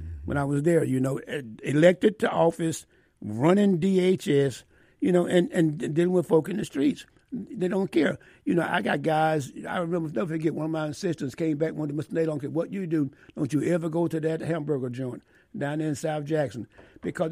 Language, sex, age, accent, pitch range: Japanese, male, 60-79, American, 150-180 Hz